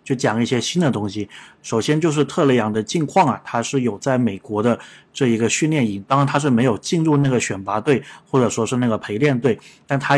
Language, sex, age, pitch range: Chinese, male, 20-39, 115-140 Hz